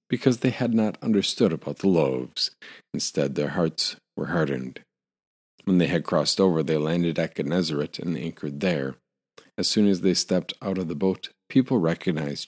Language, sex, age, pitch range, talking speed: English, male, 50-69, 80-100 Hz, 175 wpm